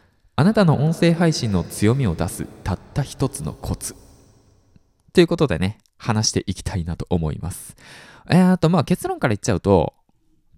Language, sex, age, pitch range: Japanese, male, 20-39, 95-155 Hz